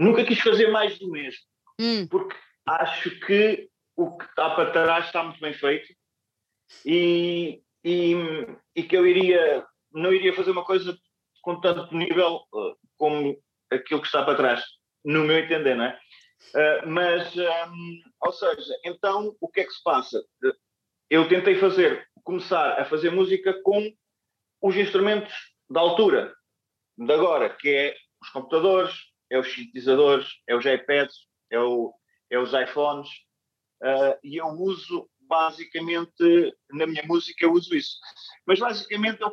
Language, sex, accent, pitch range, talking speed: Portuguese, male, Portuguese, 160-225 Hz, 145 wpm